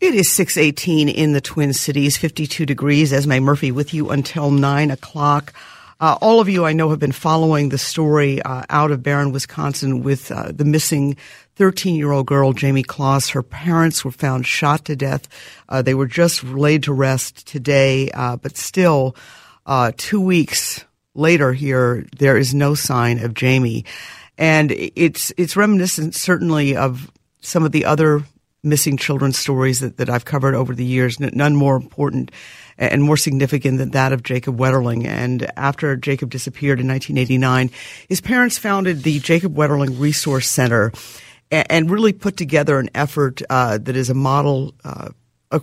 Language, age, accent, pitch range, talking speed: English, 50-69, American, 130-155 Hz, 165 wpm